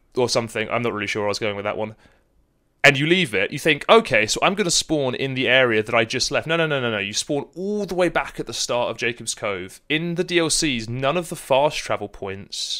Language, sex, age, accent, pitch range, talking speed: English, male, 30-49, British, 115-155 Hz, 265 wpm